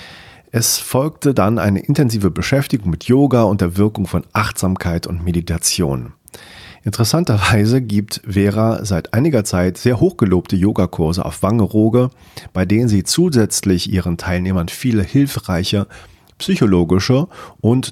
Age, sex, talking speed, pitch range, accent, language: 40-59, male, 120 wpm, 90-115 Hz, German, German